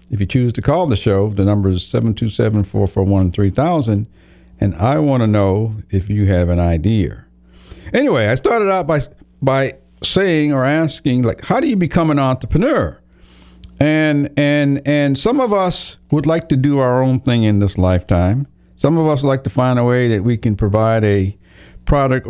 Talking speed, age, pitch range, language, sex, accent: 180 wpm, 50-69, 100-145 Hz, English, male, American